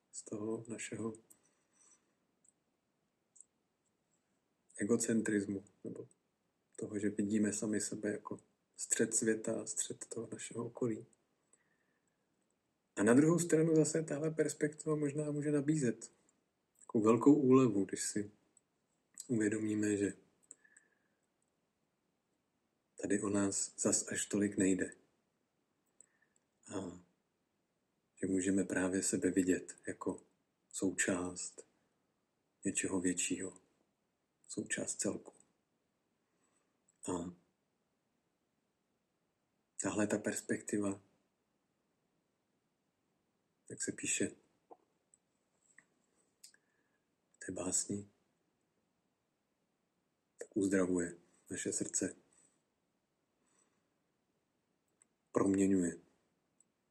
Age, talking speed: 50-69, 70 wpm